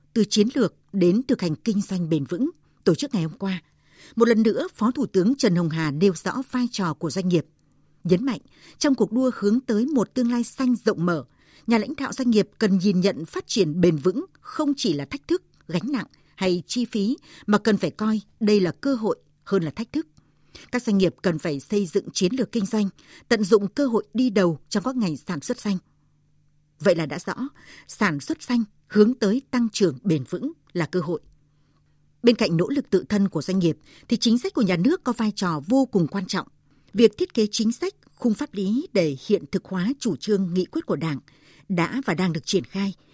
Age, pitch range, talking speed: 60-79, 175-235 Hz, 225 wpm